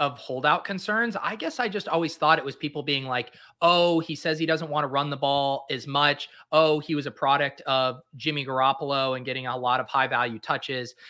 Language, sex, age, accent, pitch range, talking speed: English, male, 30-49, American, 130-160 Hz, 225 wpm